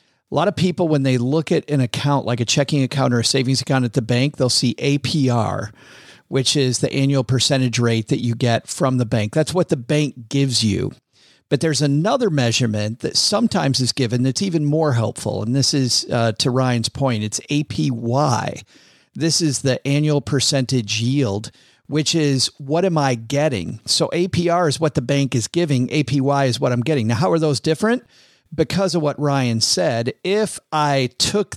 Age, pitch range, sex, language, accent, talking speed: 50-69, 125-155 Hz, male, English, American, 190 wpm